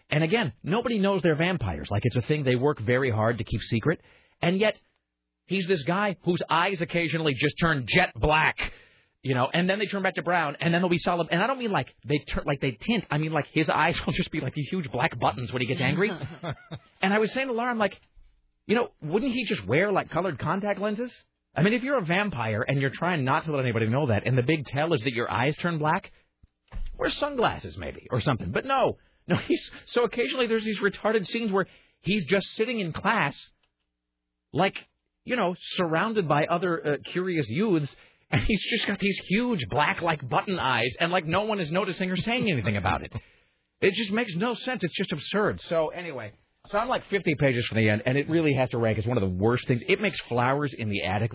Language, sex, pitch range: English, male, 125-195 Hz